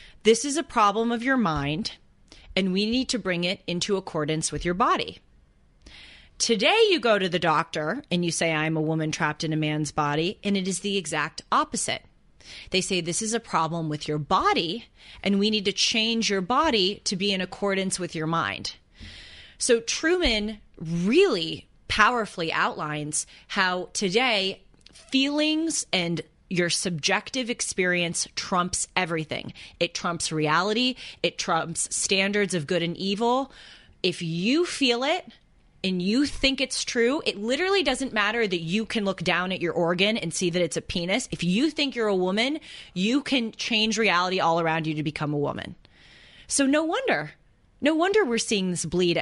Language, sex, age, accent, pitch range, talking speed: English, female, 30-49, American, 165-225 Hz, 170 wpm